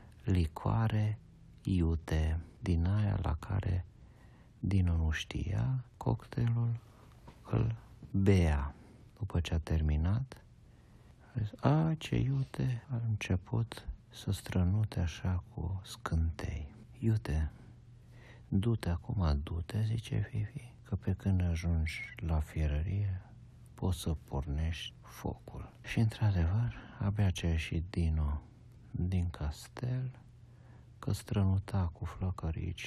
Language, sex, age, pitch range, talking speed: Romanian, male, 50-69, 85-120 Hz, 105 wpm